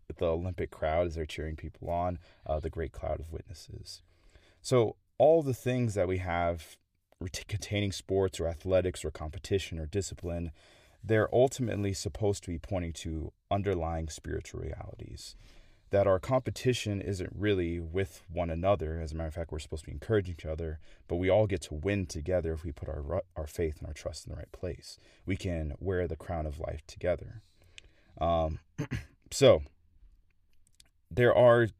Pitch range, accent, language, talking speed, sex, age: 80-100 Hz, American, English, 175 wpm, male, 30-49